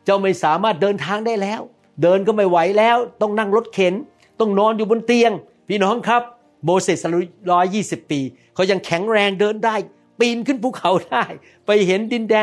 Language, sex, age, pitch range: Thai, male, 60-79, 165-220 Hz